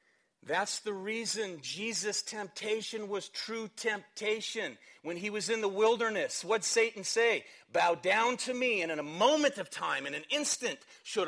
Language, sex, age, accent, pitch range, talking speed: English, male, 40-59, American, 185-255 Hz, 165 wpm